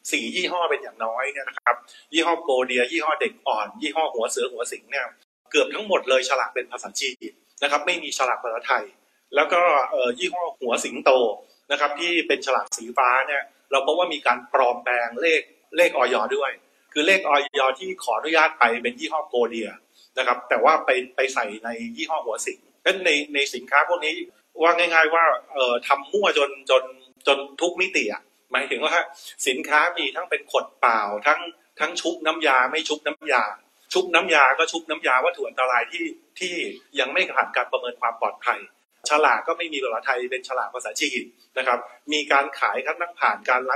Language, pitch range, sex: Thai, 130-185 Hz, male